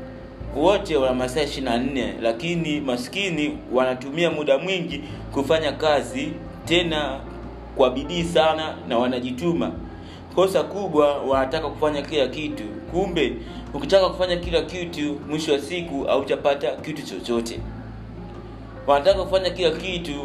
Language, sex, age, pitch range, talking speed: Swahili, male, 30-49, 125-160 Hz, 115 wpm